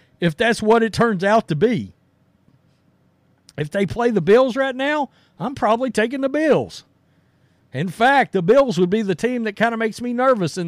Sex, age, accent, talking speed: male, 50-69, American, 195 wpm